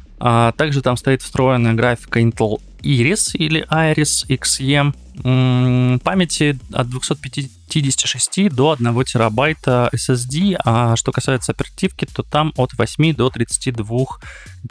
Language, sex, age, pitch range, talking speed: Russian, male, 20-39, 110-135 Hz, 110 wpm